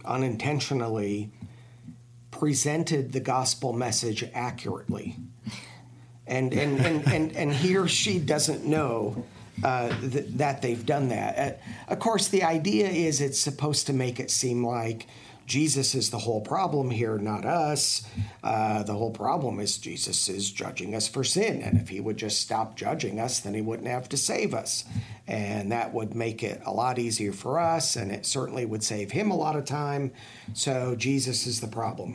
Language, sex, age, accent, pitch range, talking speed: English, male, 50-69, American, 110-135 Hz, 175 wpm